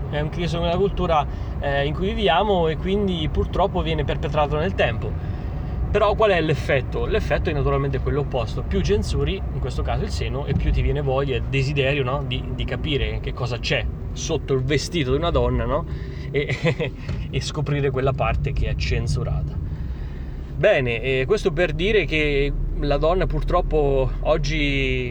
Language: Italian